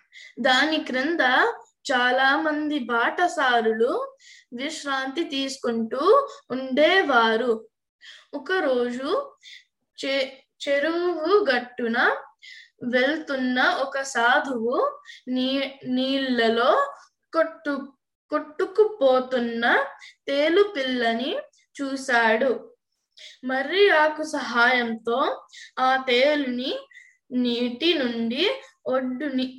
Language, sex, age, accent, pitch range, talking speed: Telugu, female, 10-29, native, 245-320 Hz, 55 wpm